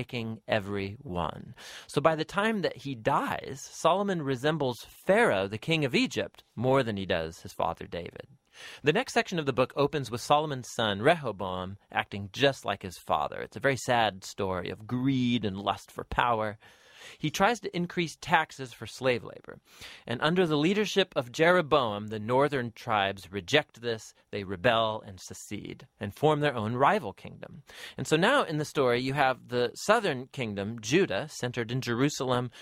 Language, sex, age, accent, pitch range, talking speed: English, male, 30-49, American, 110-150 Hz, 170 wpm